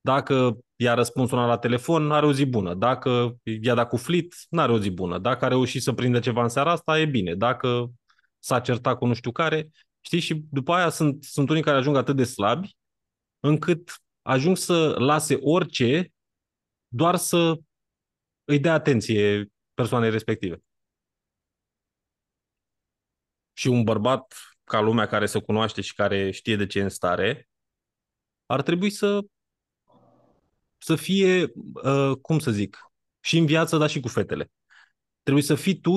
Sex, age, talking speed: male, 20-39, 160 wpm